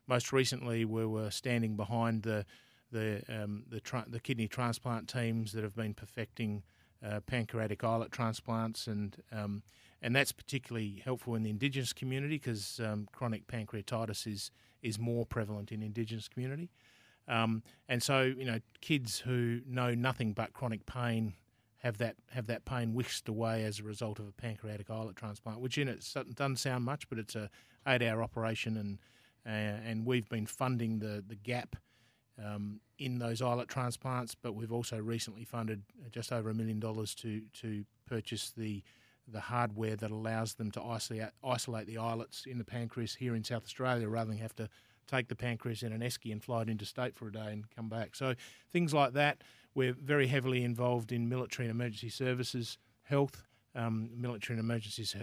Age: 30-49